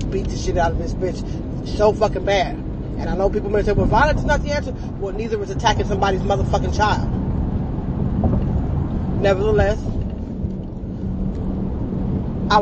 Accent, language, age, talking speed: American, English, 30-49, 145 wpm